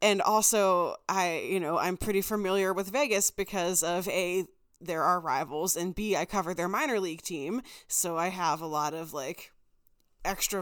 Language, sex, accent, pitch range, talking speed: English, female, American, 185-245 Hz, 180 wpm